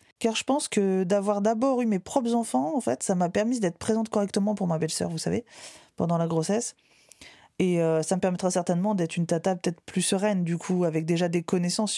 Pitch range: 160-210 Hz